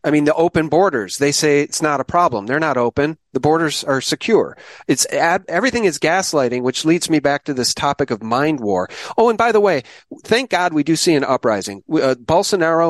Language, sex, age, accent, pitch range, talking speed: English, male, 40-59, American, 130-160 Hz, 215 wpm